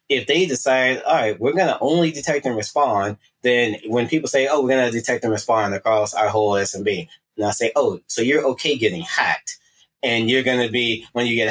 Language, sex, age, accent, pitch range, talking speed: English, male, 20-39, American, 115-140 Hz, 230 wpm